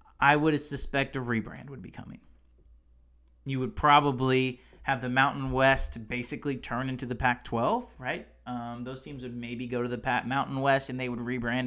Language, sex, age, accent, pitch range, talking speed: English, male, 30-49, American, 115-155 Hz, 185 wpm